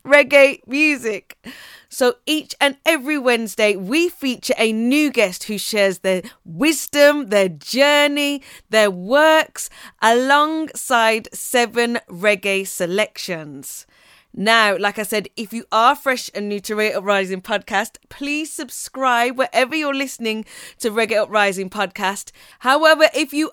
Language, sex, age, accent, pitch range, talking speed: English, female, 20-39, British, 230-290 Hz, 135 wpm